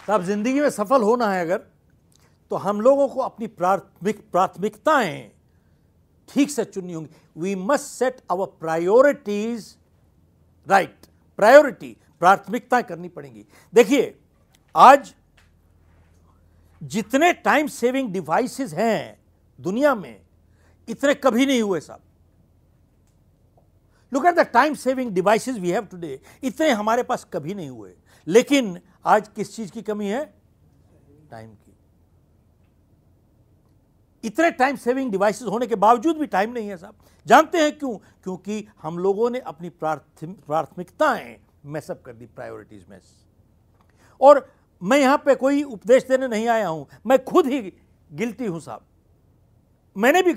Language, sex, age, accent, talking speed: Hindi, male, 60-79, native, 130 wpm